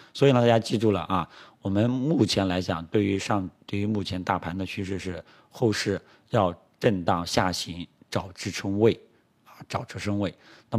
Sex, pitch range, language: male, 95-115 Hz, Chinese